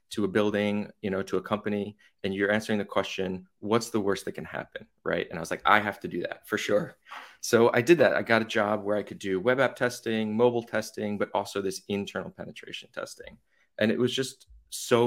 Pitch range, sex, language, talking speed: 100-120 Hz, male, English, 235 wpm